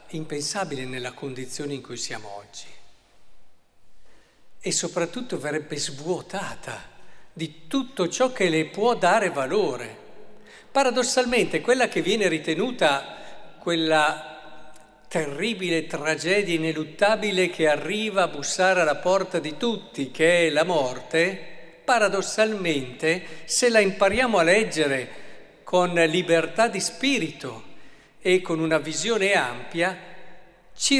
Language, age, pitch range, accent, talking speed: Italian, 50-69, 155-210 Hz, native, 110 wpm